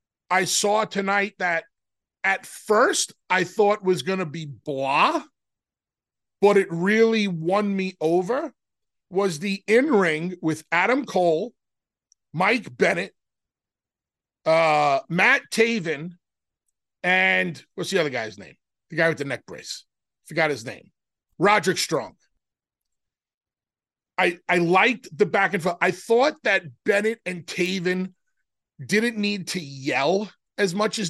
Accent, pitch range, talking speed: American, 170-205 Hz, 130 wpm